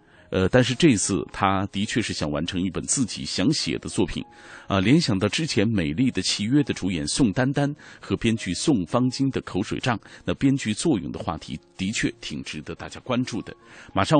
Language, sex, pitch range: Chinese, male, 95-130 Hz